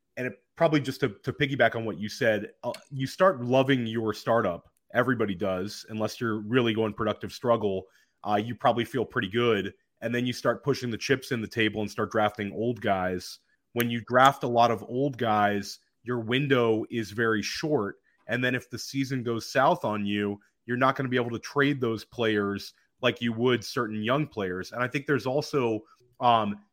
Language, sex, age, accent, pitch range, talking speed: English, male, 30-49, American, 110-130 Hz, 200 wpm